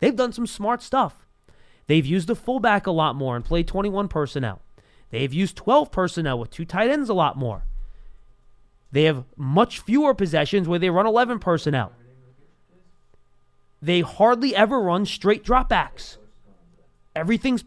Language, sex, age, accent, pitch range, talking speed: English, male, 30-49, American, 140-205 Hz, 150 wpm